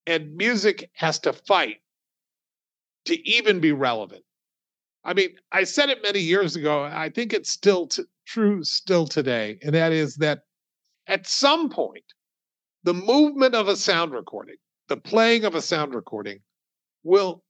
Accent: American